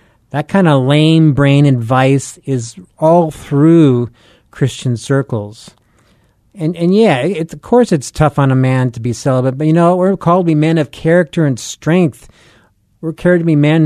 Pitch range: 120-155 Hz